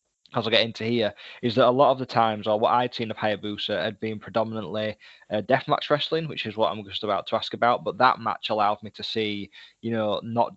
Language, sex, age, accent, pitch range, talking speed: English, male, 20-39, British, 105-120 Hz, 240 wpm